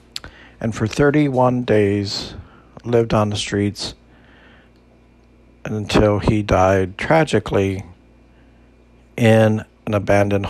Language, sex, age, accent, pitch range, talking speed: English, male, 60-79, American, 95-115 Hz, 85 wpm